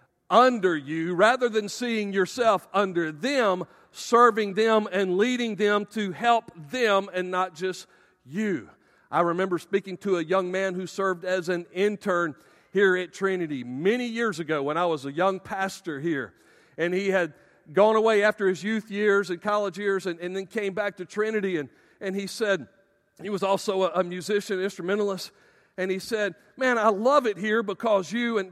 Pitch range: 190-225 Hz